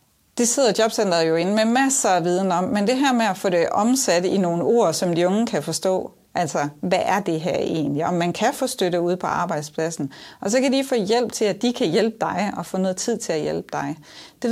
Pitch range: 175-235 Hz